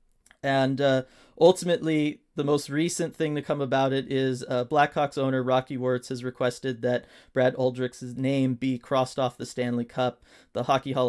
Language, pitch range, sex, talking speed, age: English, 125-140 Hz, male, 175 wpm, 30-49